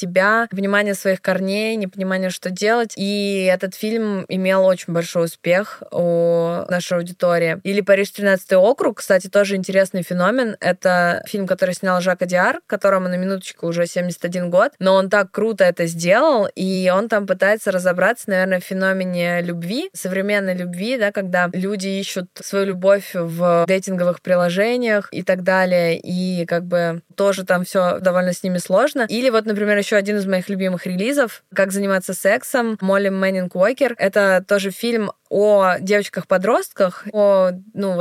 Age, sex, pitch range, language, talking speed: 20-39, female, 180-205 Hz, Russian, 155 wpm